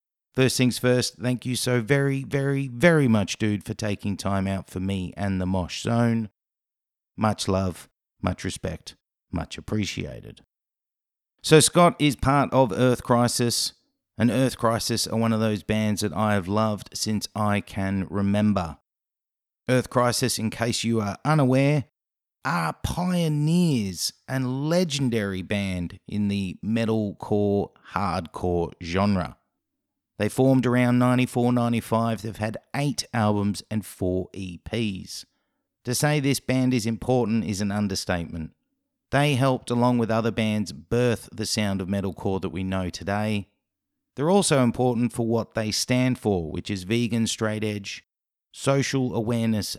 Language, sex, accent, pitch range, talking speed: English, male, Australian, 100-125 Hz, 140 wpm